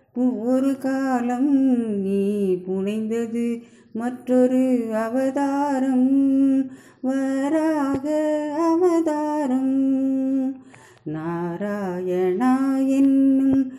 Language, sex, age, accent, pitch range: Tamil, female, 20-39, native, 245-285 Hz